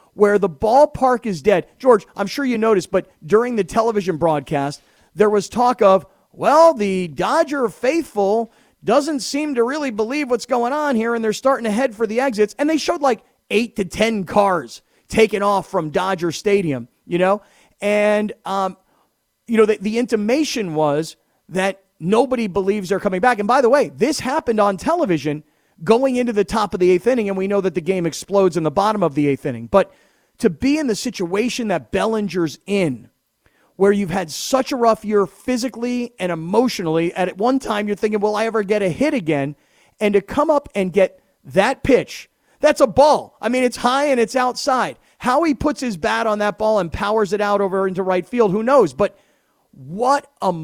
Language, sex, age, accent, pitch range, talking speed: English, male, 40-59, American, 190-245 Hz, 200 wpm